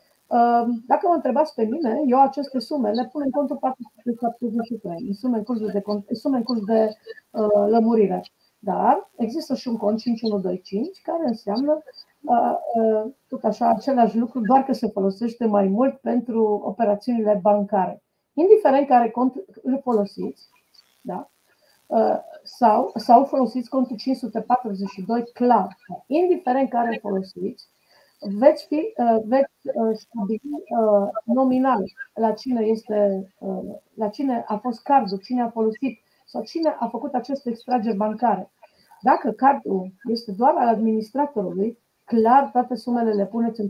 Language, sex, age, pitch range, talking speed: Romanian, female, 40-59, 215-260 Hz, 140 wpm